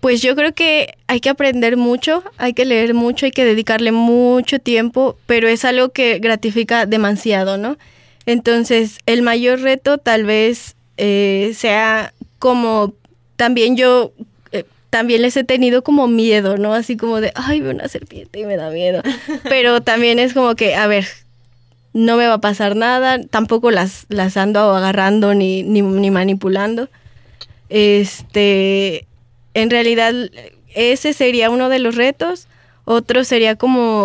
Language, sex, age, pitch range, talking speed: Spanish, female, 10-29, 205-240 Hz, 155 wpm